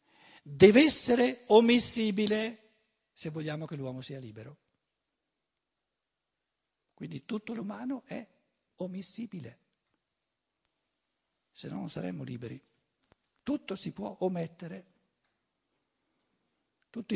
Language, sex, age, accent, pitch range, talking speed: Italian, male, 60-79, native, 140-200 Hz, 85 wpm